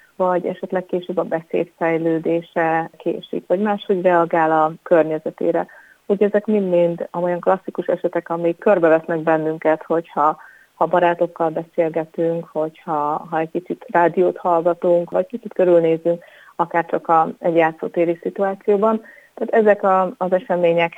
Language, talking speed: Hungarian, 130 wpm